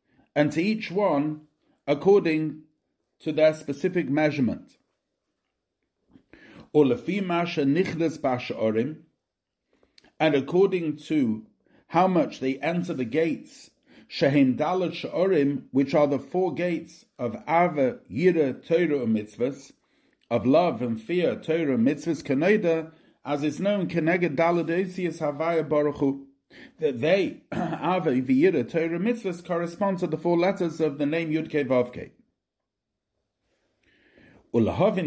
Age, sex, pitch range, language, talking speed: 50-69, male, 145-180 Hz, English, 115 wpm